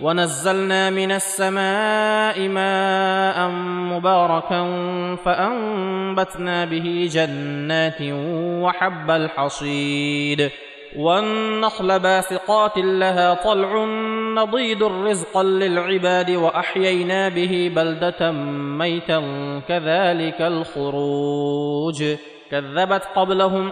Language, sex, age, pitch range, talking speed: Arabic, male, 30-49, 165-190 Hz, 65 wpm